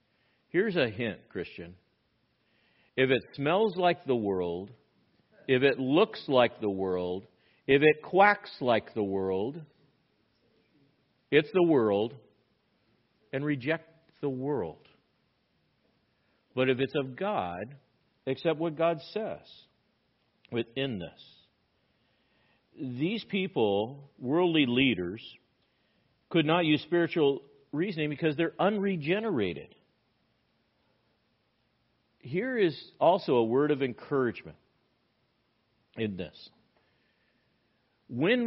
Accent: American